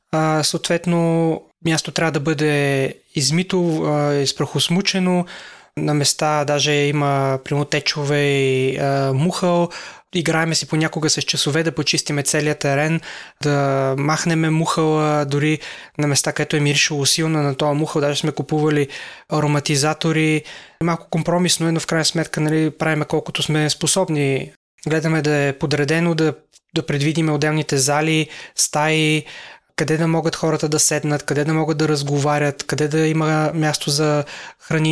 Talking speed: 135 wpm